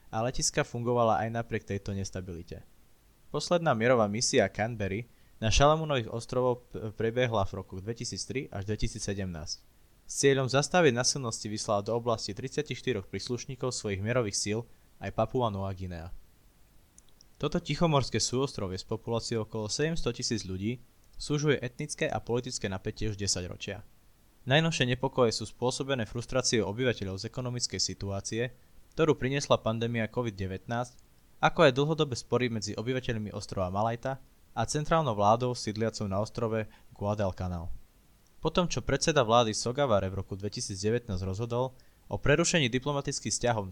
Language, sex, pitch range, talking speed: Slovak, male, 100-130 Hz, 130 wpm